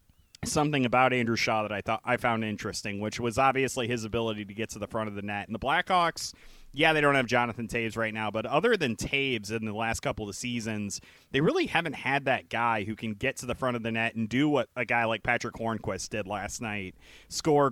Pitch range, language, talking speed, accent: 110-140 Hz, English, 240 wpm, American